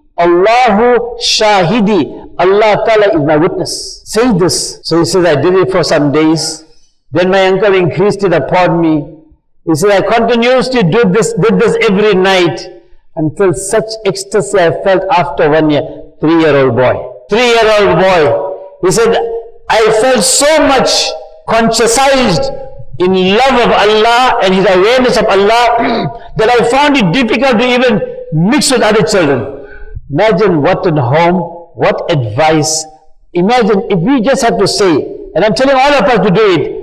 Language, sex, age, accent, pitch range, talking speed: English, male, 60-79, Indian, 160-235 Hz, 165 wpm